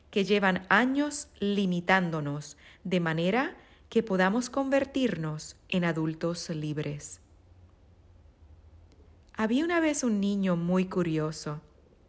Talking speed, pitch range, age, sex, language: 95 wpm, 160-225 Hz, 40-59, female, Spanish